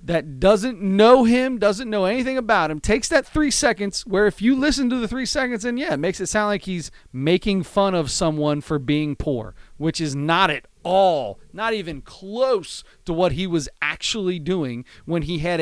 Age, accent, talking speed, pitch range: 30-49, American, 205 wpm, 160-225 Hz